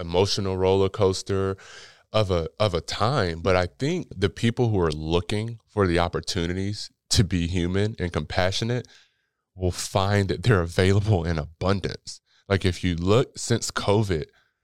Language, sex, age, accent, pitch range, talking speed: English, male, 20-39, American, 85-105 Hz, 150 wpm